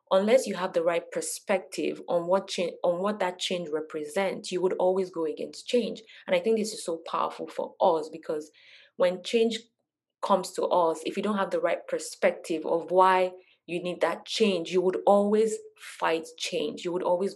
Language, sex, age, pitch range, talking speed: English, female, 20-39, 175-235 Hz, 195 wpm